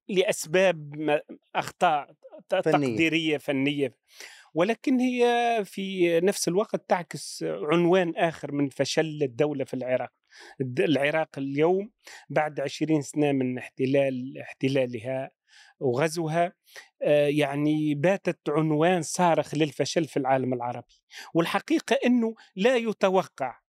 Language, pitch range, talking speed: Arabic, 150-200 Hz, 95 wpm